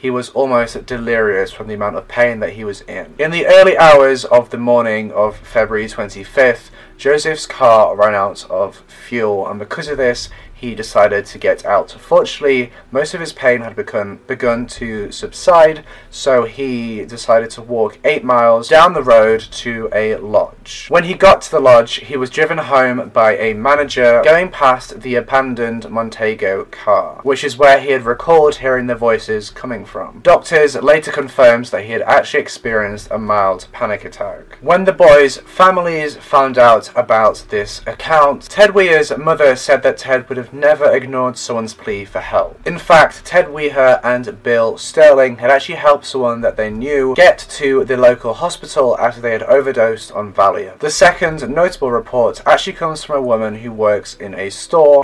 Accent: British